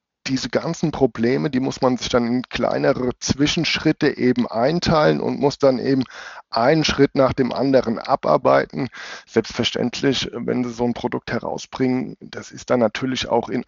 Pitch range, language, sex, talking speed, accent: 115-135 Hz, German, male, 160 wpm, German